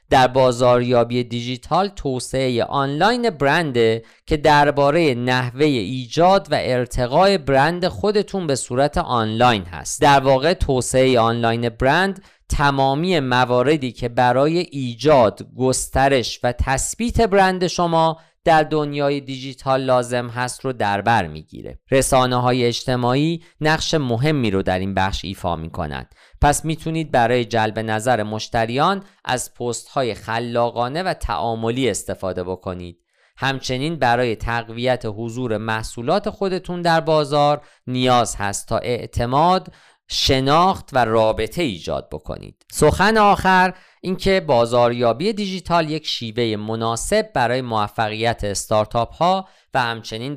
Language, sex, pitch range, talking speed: Persian, male, 110-155 Hz, 115 wpm